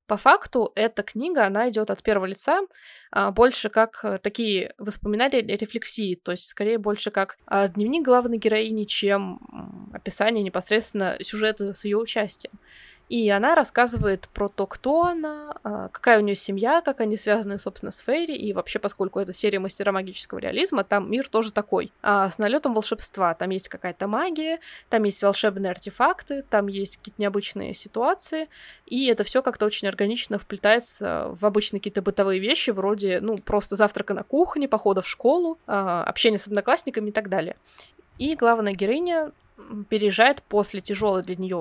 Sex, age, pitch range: female, 20-39, 200-240 Hz